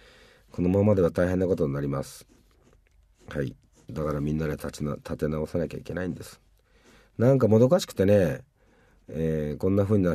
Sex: male